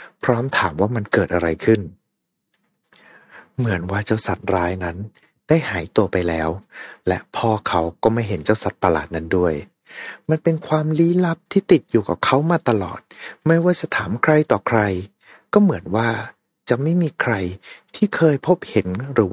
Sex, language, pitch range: male, Thai, 90-125 Hz